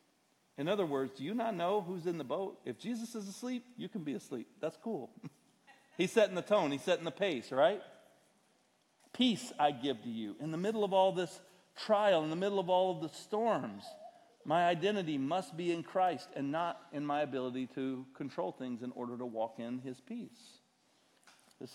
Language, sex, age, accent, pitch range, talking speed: English, male, 40-59, American, 120-170 Hz, 200 wpm